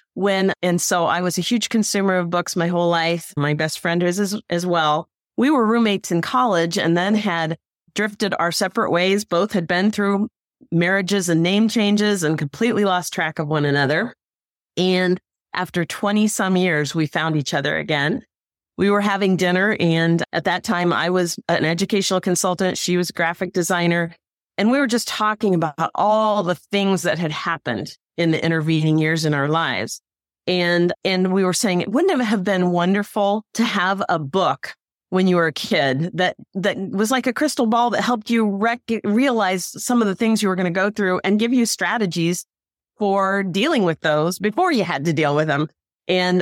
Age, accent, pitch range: 30-49, American, 165-205 Hz